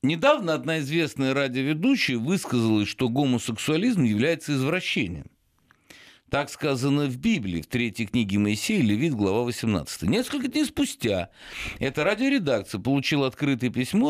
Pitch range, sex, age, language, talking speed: 115-195 Hz, male, 50-69, Russian, 120 wpm